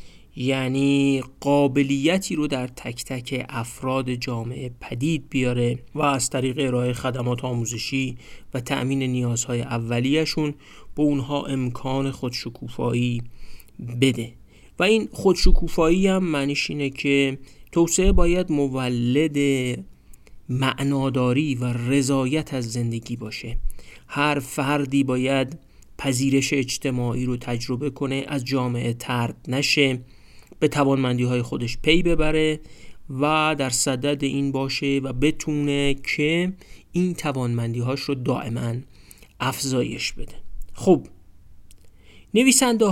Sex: male